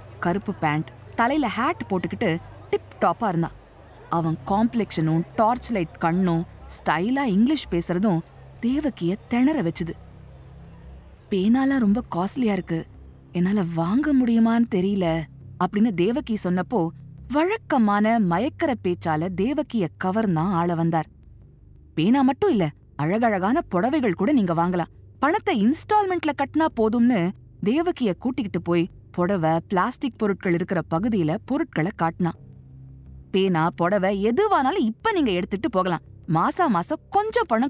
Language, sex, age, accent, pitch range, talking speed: Tamil, female, 20-39, native, 170-245 Hz, 110 wpm